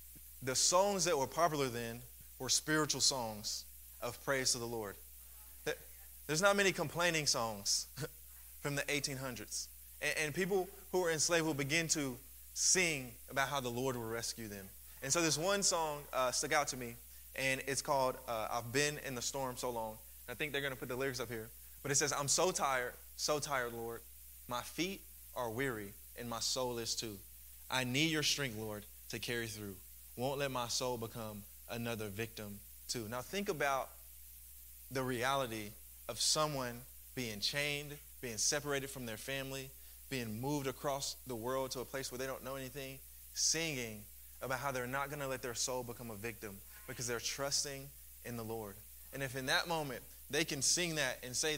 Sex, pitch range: male, 105-140 Hz